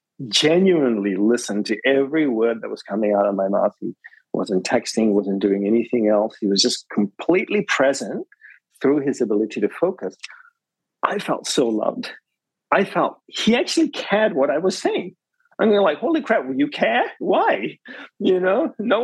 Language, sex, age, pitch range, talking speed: English, male, 40-59, 115-180 Hz, 170 wpm